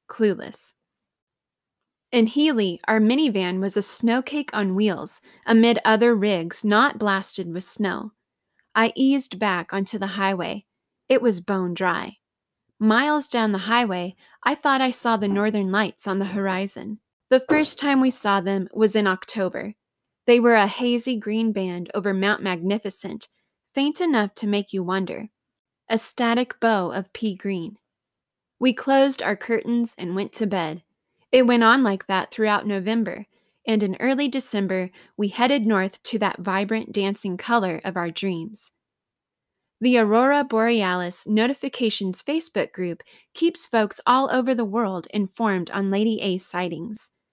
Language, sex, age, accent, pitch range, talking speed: English, female, 20-39, American, 195-240 Hz, 150 wpm